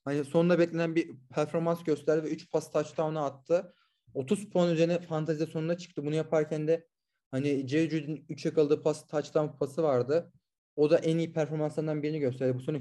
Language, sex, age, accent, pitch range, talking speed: Turkish, male, 30-49, native, 140-170 Hz, 180 wpm